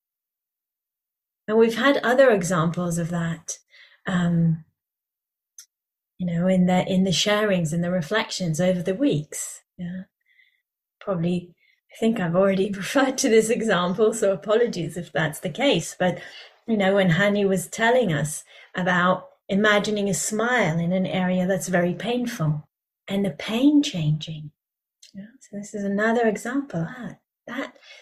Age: 30-49